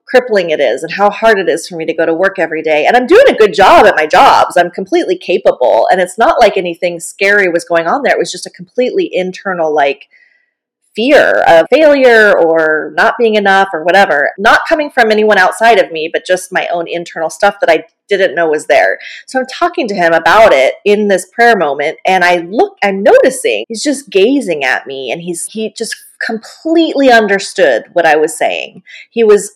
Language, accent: English, American